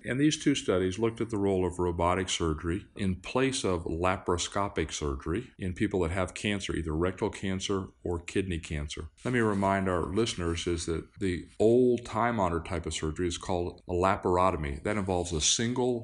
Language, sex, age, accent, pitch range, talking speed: English, male, 40-59, American, 85-105 Hz, 180 wpm